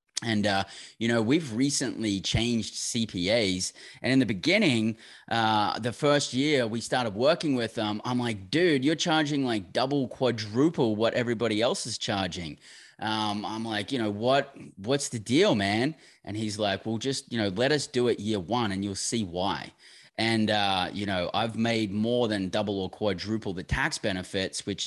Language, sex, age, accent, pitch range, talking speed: English, male, 20-39, Australian, 105-135 Hz, 185 wpm